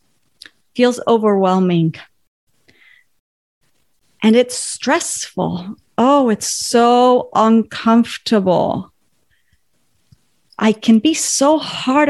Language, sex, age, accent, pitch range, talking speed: English, female, 30-49, American, 185-240 Hz, 70 wpm